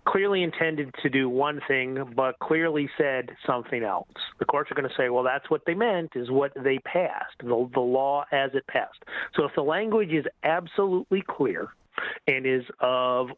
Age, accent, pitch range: 40-59, American, 115-140 Hz